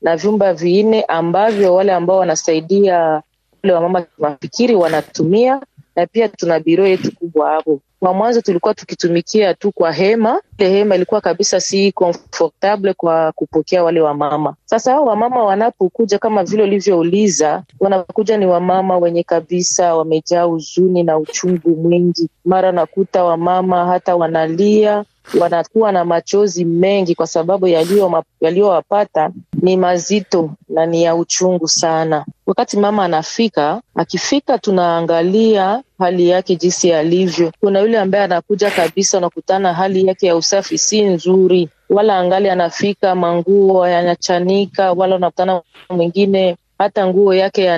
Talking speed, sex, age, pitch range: 135 wpm, female, 30-49, 170-200 Hz